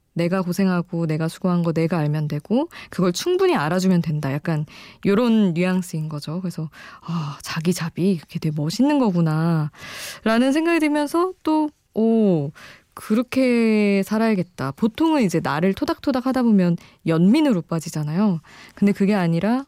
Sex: female